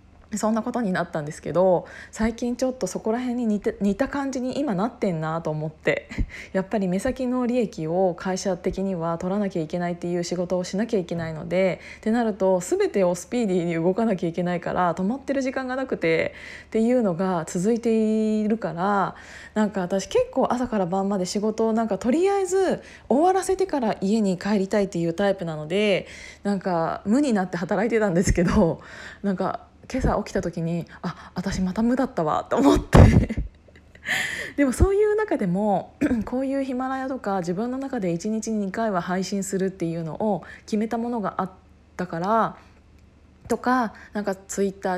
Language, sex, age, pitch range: Japanese, female, 20-39, 180-225 Hz